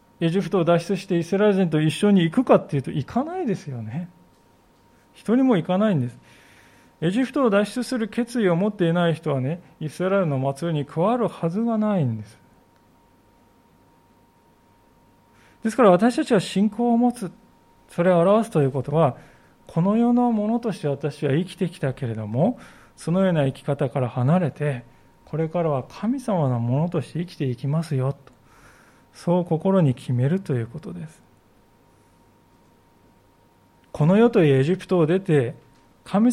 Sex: male